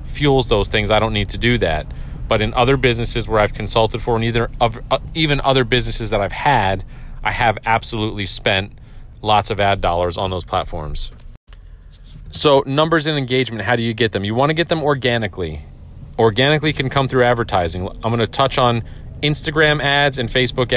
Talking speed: 190 wpm